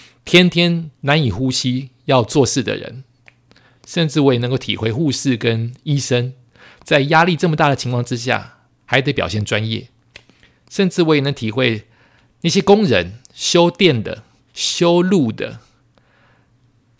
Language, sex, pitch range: Chinese, male, 110-140 Hz